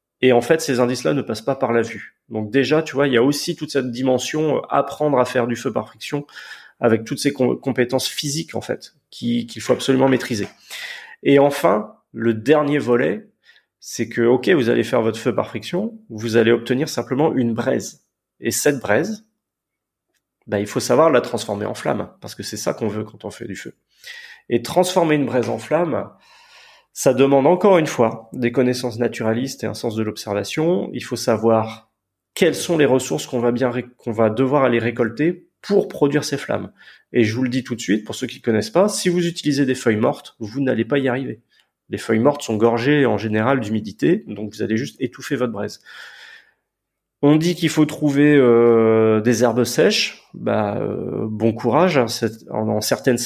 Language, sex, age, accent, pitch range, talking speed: French, male, 30-49, French, 115-140 Hz, 205 wpm